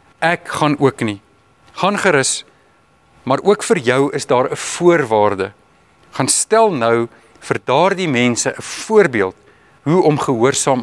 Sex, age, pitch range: male, 50-69, 125-165 Hz